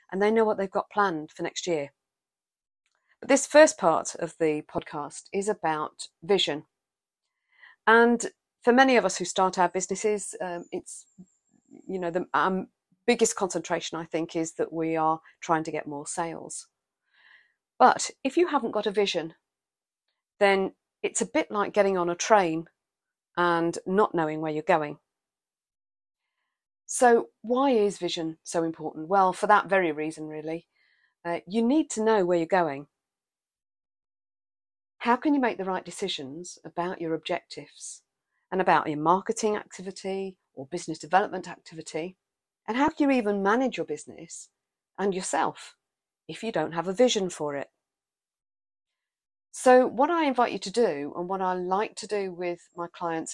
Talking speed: 160 wpm